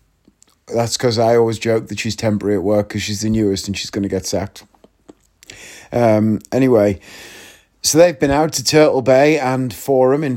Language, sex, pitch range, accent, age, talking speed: English, male, 115-150 Hz, British, 30-49, 185 wpm